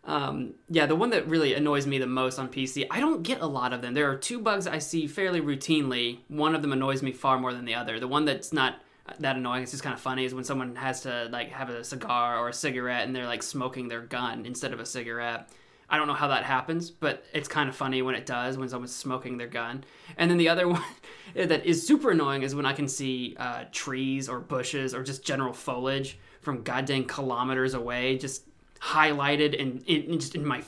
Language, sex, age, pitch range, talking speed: English, male, 20-39, 130-155 Hz, 235 wpm